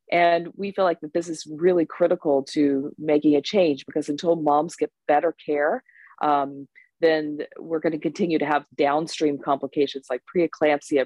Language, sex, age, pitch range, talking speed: English, female, 40-59, 135-155 Hz, 170 wpm